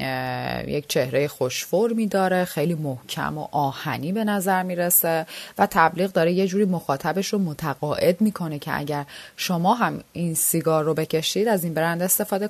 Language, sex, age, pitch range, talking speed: Persian, female, 30-49, 150-210 Hz, 160 wpm